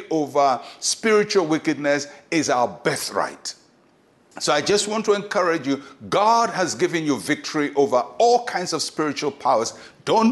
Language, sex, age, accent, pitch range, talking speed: English, male, 60-79, Nigerian, 140-200 Hz, 145 wpm